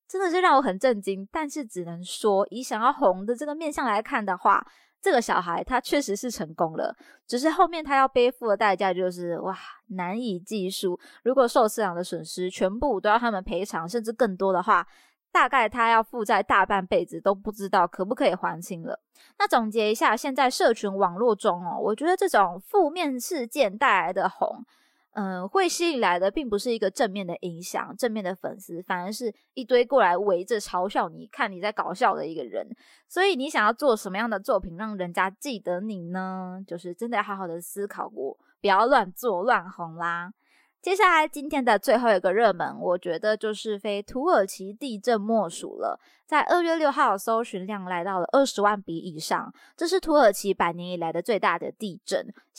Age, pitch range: 20-39, 190-270 Hz